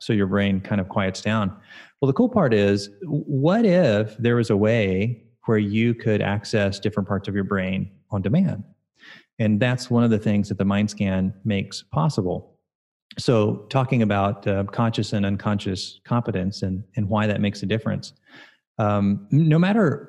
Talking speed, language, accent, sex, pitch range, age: 175 wpm, English, American, male, 100-120 Hz, 30-49